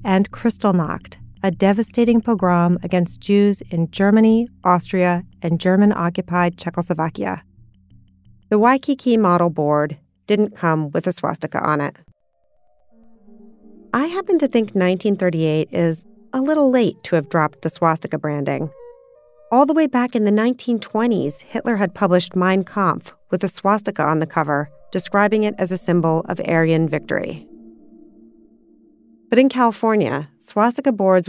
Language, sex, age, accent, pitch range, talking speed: English, female, 30-49, American, 155-210 Hz, 135 wpm